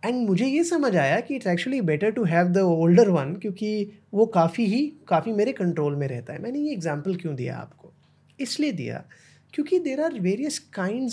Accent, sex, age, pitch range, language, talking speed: native, male, 30-49, 160-215 Hz, Hindi, 200 wpm